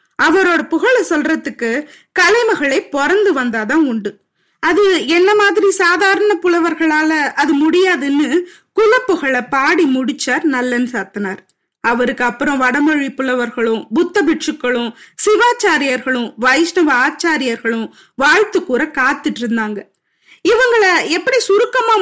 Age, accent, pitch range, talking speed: 20-39, native, 250-355 Hz, 95 wpm